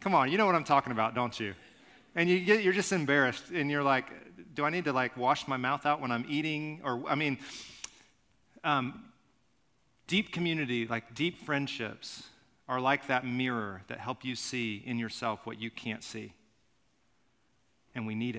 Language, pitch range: English, 110-140 Hz